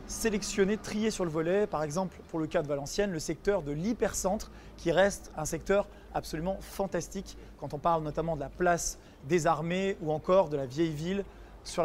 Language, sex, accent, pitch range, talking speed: French, male, French, 165-210 Hz, 195 wpm